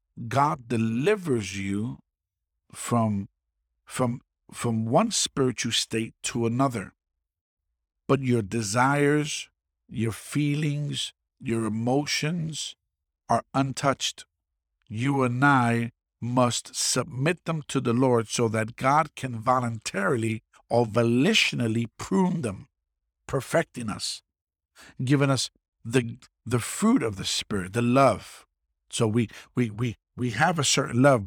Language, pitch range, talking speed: English, 90-130 Hz, 115 wpm